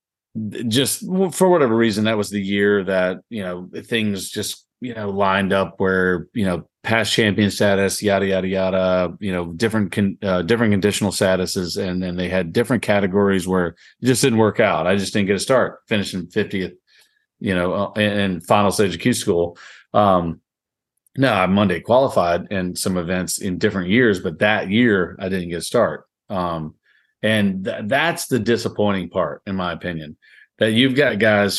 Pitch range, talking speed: 95-110 Hz, 180 wpm